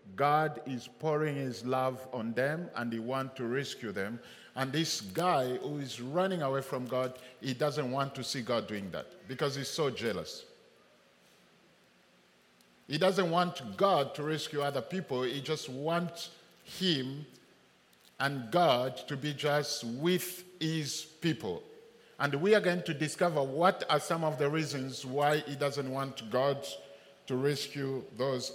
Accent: French